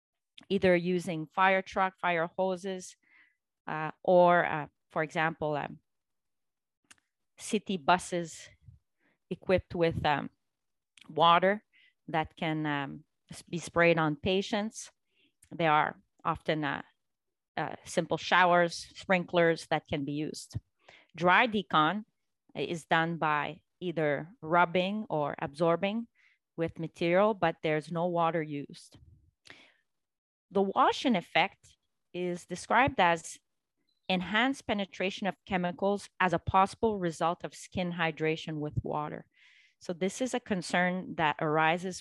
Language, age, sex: English, 30-49, female